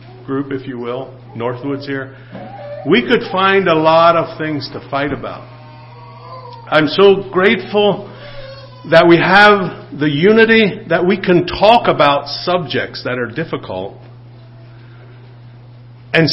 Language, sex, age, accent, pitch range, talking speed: English, male, 50-69, American, 120-165 Hz, 125 wpm